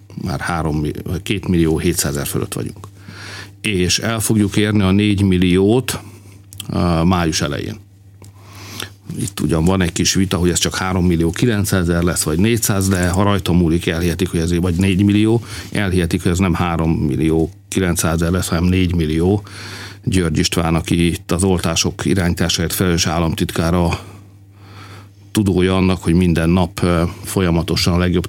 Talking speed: 155 wpm